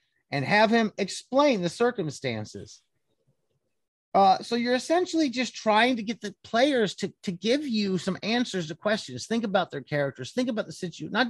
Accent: American